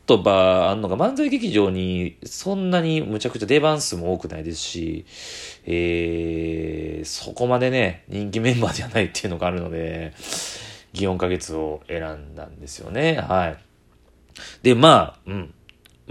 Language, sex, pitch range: Japanese, male, 80-105 Hz